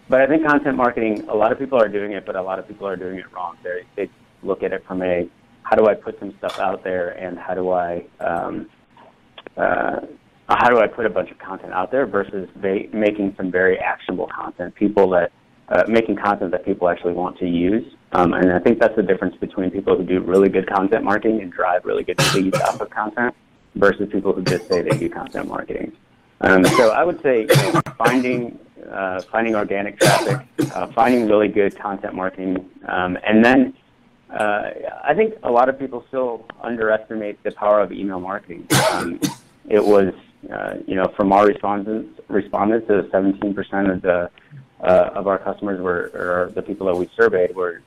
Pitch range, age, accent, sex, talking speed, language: 95-110 Hz, 30-49, American, male, 200 wpm, English